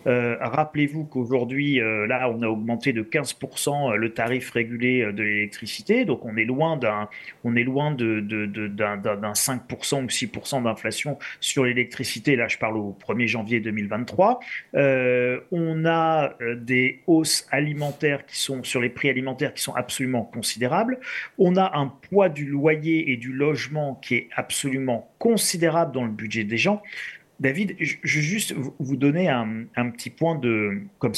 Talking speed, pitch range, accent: 170 wpm, 115-150 Hz, French